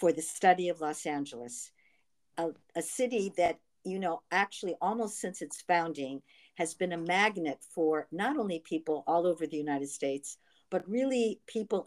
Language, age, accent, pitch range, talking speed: English, 50-69, American, 155-190 Hz, 165 wpm